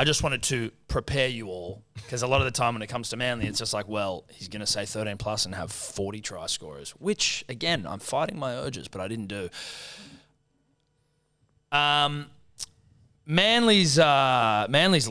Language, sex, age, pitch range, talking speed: English, male, 20-39, 110-150 Hz, 185 wpm